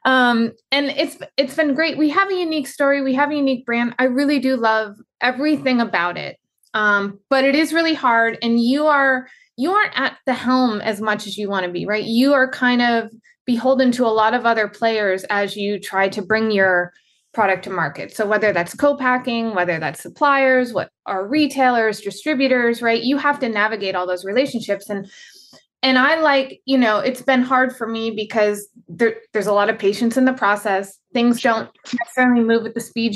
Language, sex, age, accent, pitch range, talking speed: English, female, 20-39, American, 215-265 Hz, 200 wpm